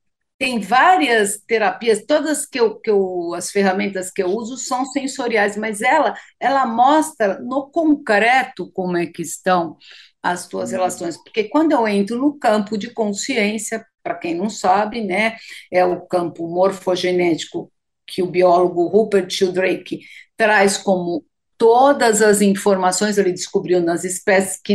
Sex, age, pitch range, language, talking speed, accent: female, 50-69, 185-260 Hz, English, 145 wpm, Brazilian